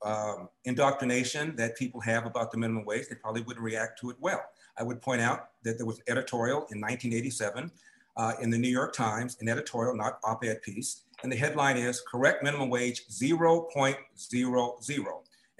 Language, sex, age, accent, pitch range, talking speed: English, male, 50-69, American, 115-130 Hz, 175 wpm